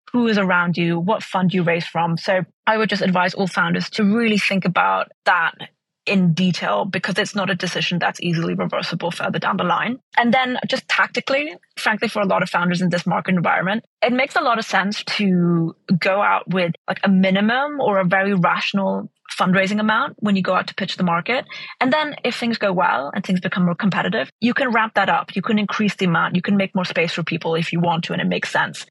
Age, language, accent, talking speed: 20-39, English, British, 230 wpm